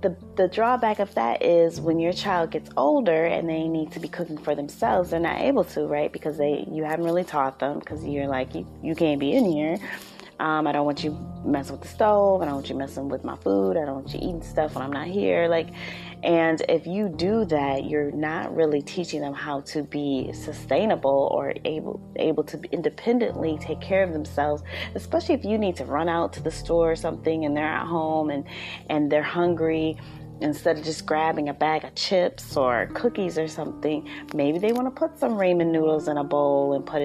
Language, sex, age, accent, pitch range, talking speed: English, female, 20-39, American, 145-175 Hz, 220 wpm